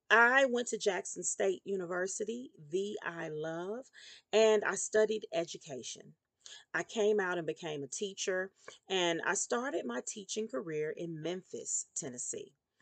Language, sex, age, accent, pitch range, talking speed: English, female, 40-59, American, 170-230 Hz, 135 wpm